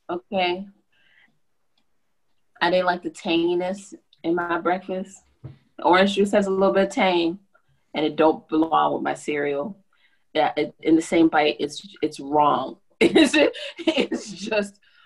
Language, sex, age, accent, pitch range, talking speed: English, female, 20-39, American, 175-255 Hz, 145 wpm